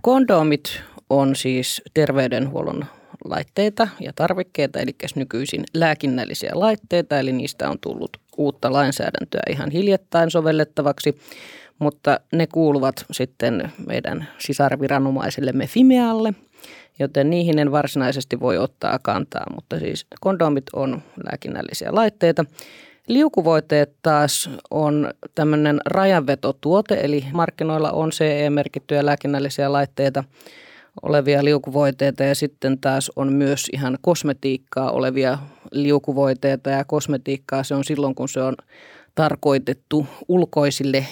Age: 30-49